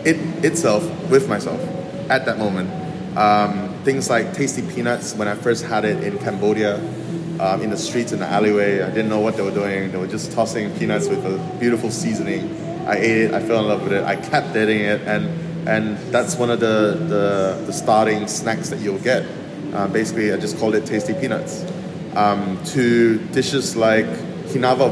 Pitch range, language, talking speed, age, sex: 105-135 Hz, English, 195 wpm, 20-39, male